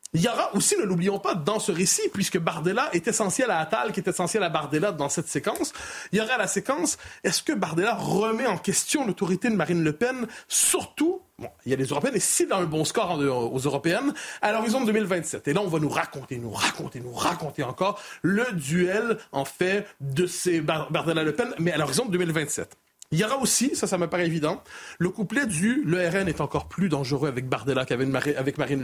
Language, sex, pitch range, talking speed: French, male, 160-220 Hz, 225 wpm